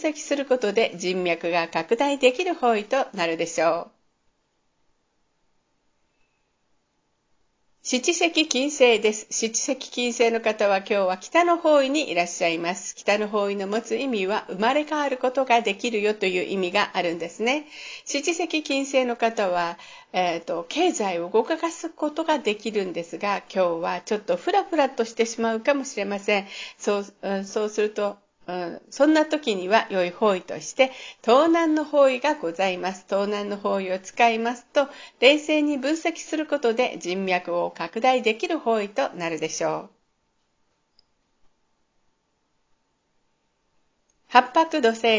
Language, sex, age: Japanese, female, 50-69